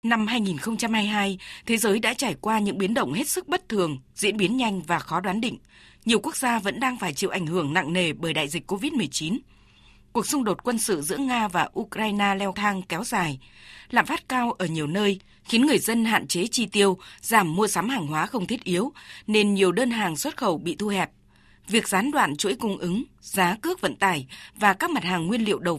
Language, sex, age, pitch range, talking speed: Vietnamese, female, 20-39, 180-235 Hz, 225 wpm